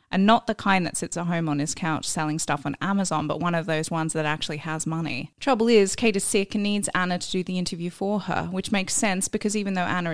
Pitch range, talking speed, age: 160-195 Hz, 265 wpm, 20-39